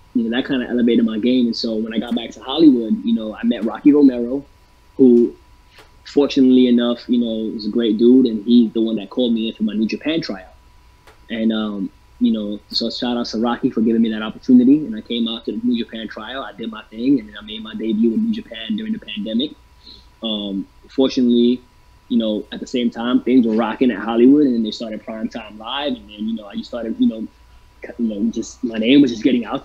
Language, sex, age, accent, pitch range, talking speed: English, male, 20-39, American, 110-125 Hz, 245 wpm